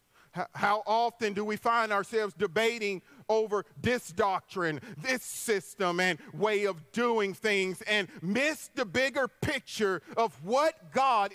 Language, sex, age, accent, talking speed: English, male, 40-59, American, 130 wpm